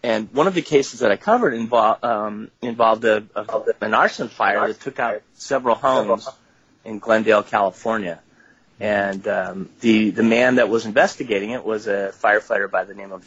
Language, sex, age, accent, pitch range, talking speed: English, male, 30-49, American, 110-140 Hz, 180 wpm